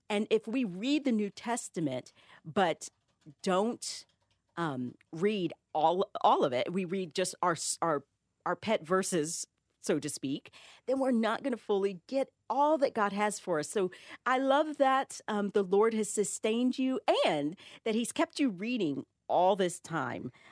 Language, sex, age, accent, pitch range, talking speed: English, female, 40-59, American, 155-215 Hz, 170 wpm